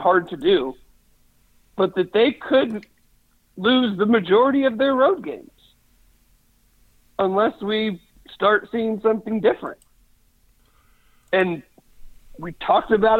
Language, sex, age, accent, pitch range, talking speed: English, male, 50-69, American, 180-235 Hz, 110 wpm